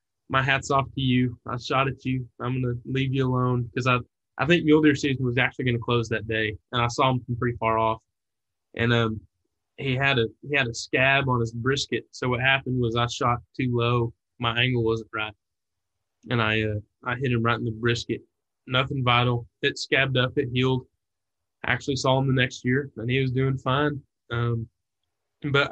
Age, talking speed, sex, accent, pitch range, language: 20-39, 210 wpm, male, American, 115-135 Hz, English